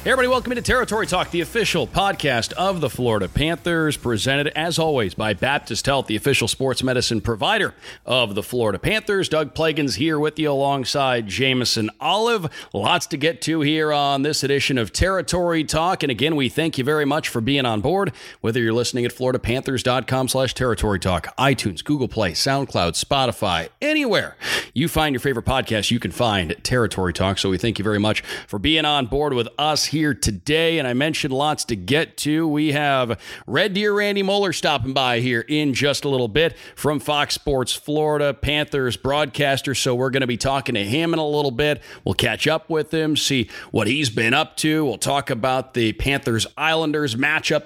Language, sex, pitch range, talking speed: English, male, 120-155 Hz, 190 wpm